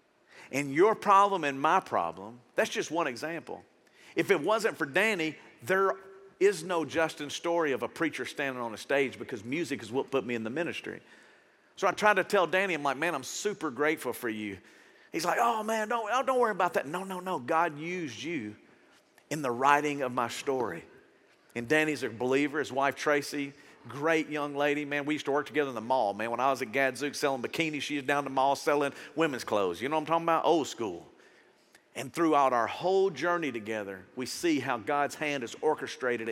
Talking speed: 210 wpm